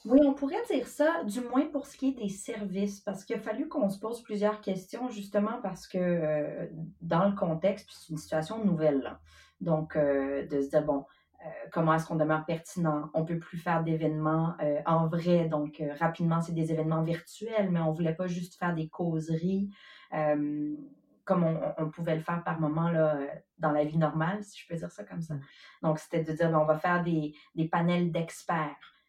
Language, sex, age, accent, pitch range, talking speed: French, female, 30-49, Canadian, 160-195 Hz, 205 wpm